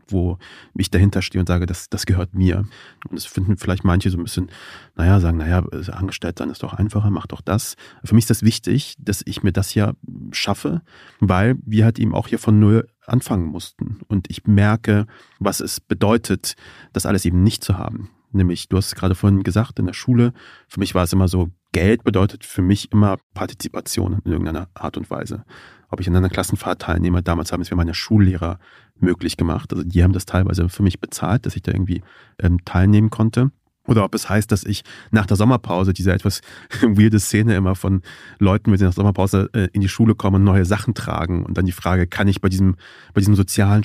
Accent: German